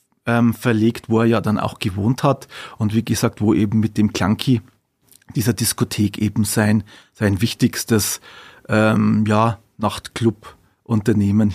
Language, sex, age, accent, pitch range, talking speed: German, male, 40-59, Austrian, 105-120 Hz, 130 wpm